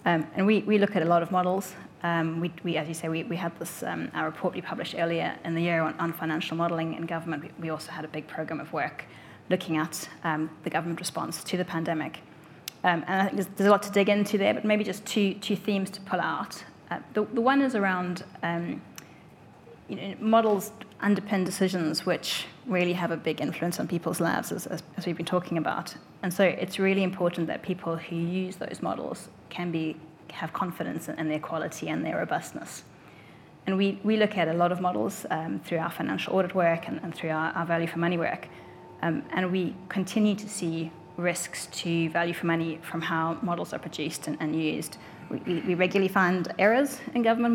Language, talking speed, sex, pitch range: English, 220 wpm, female, 165-195 Hz